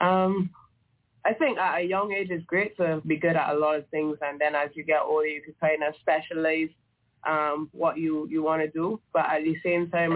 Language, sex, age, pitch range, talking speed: English, female, 20-39, 155-175 Hz, 235 wpm